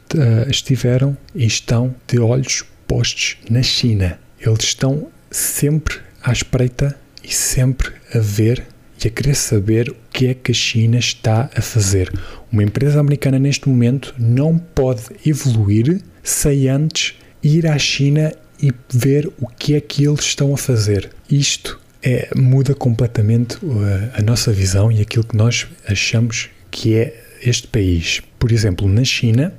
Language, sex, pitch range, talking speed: Portuguese, male, 110-135 Hz, 150 wpm